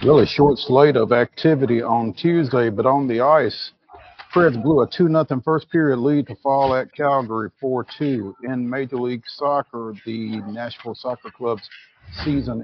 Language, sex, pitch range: English, male, 115-150 Hz